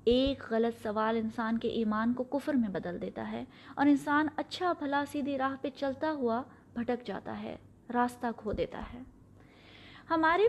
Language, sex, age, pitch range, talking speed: Urdu, female, 20-39, 230-280 Hz, 165 wpm